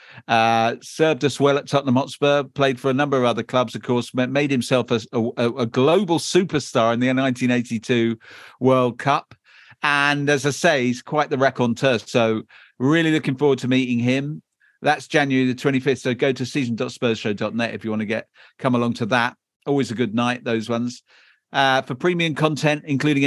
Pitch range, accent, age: 120-145 Hz, British, 50-69